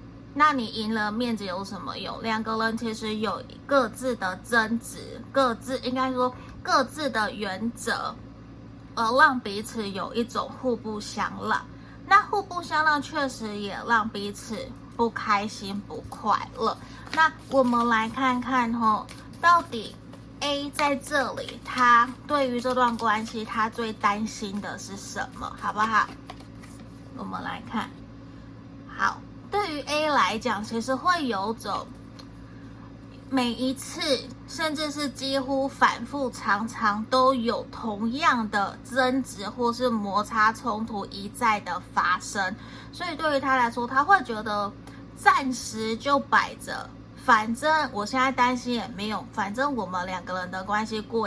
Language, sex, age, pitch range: Chinese, female, 20-39, 210-265 Hz